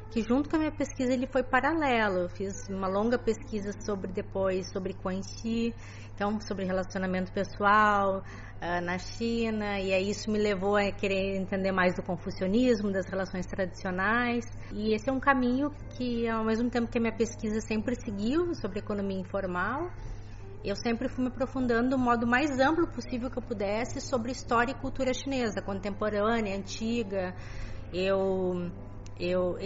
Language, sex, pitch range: Chinese, female, 185-245 Hz